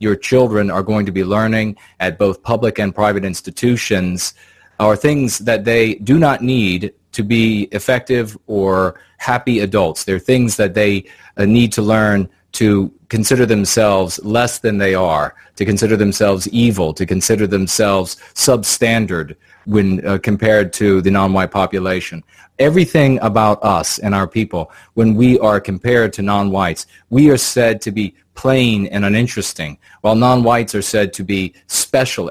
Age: 40-59